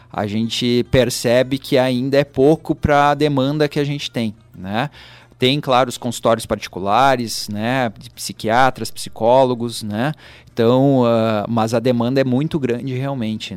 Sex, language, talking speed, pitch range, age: male, Portuguese, 150 wpm, 115-150 Hz, 30-49